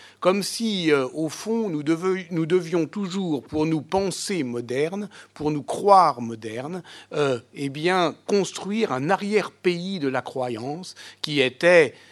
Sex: male